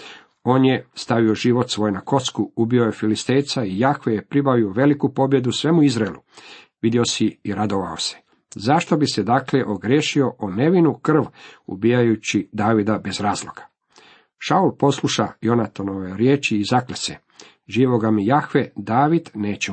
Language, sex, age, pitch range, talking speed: Croatian, male, 50-69, 105-135 Hz, 145 wpm